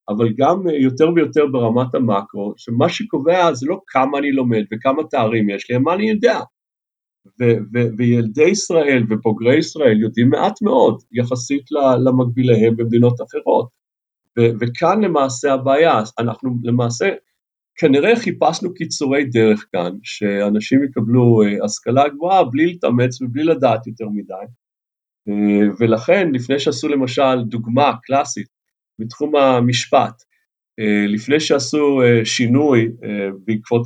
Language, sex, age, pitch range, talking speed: Hebrew, male, 50-69, 115-150 Hz, 125 wpm